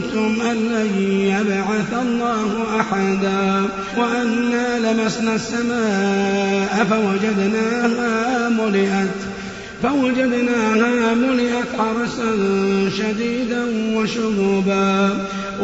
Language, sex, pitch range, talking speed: Arabic, male, 205-245 Hz, 60 wpm